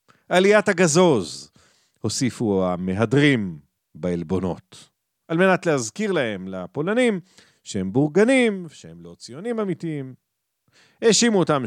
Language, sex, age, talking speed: Hebrew, male, 40-59, 95 wpm